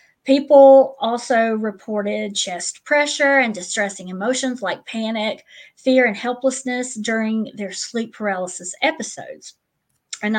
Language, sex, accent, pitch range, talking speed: English, female, American, 210-260 Hz, 110 wpm